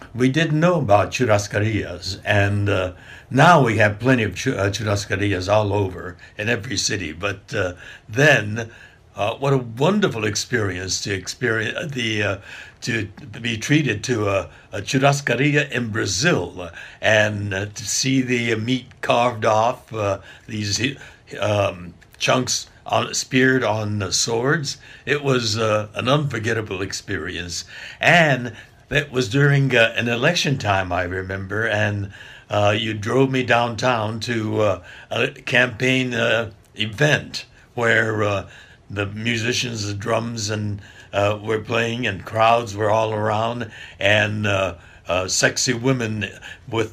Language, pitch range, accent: Portuguese, 100-125 Hz, American